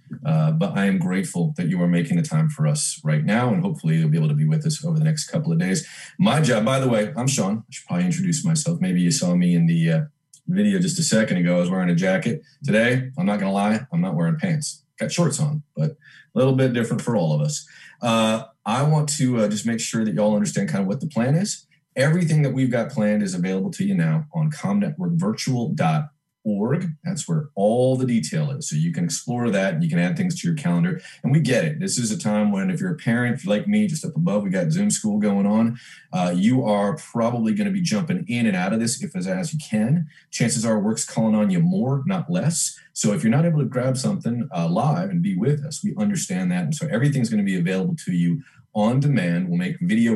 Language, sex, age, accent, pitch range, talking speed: English, male, 30-49, American, 130-175 Hz, 255 wpm